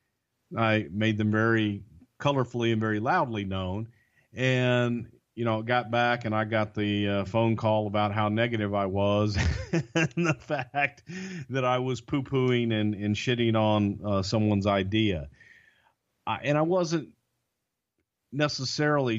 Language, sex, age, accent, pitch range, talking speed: English, male, 50-69, American, 105-125 Hz, 140 wpm